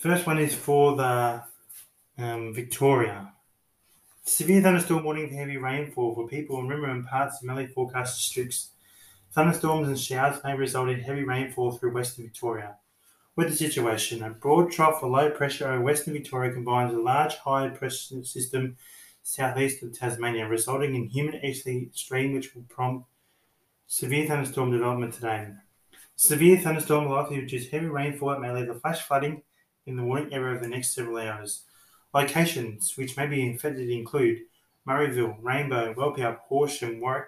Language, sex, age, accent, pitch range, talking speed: English, male, 20-39, Australian, 120-145 Hz, 155 wpm